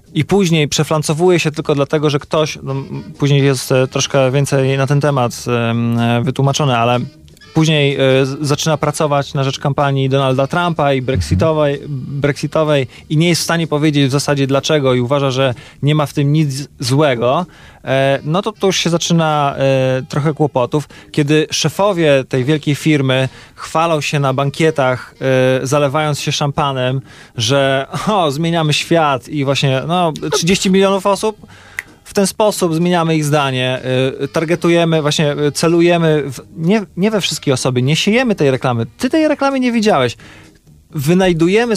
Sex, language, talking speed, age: male, Polish, 140 wpm, 20-39